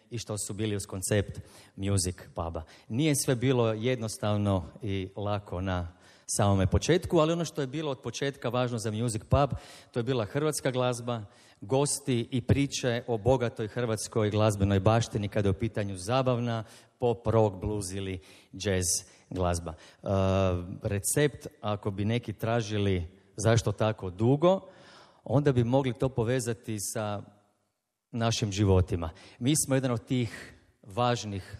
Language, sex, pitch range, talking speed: Croatian, male, 105-130 Hz, 140 wpm